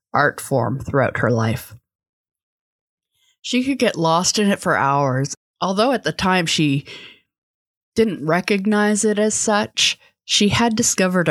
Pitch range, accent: 145-205 Hz, American